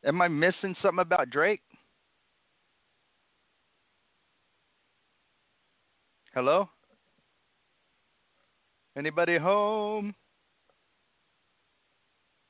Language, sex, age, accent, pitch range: English, male, 40-59, American, 125-190 Hz